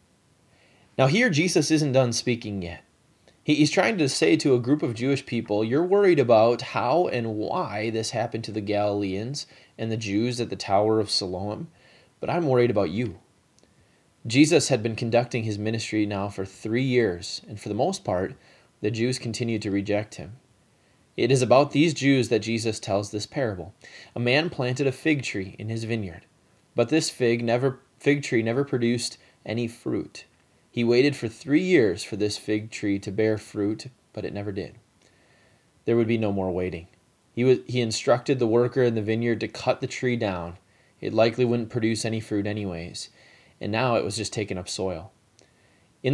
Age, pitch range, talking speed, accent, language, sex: 20-39, 105-130 Hz, 185 wpm, American, English, male